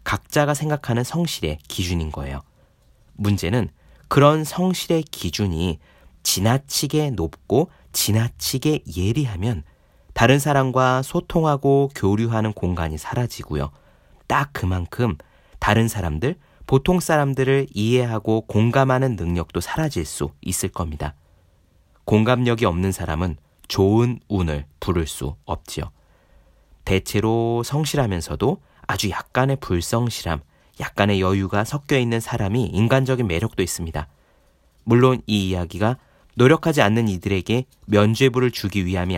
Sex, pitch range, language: male, 90-135 Hz, Korean